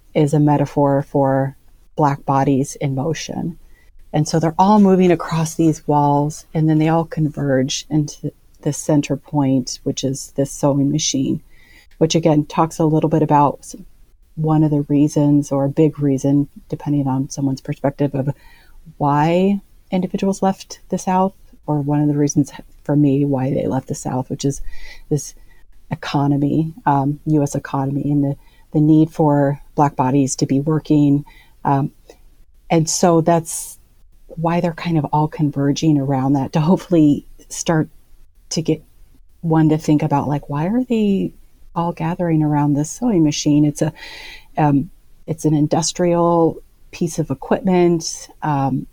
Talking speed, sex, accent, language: 155 wpm, female, American, English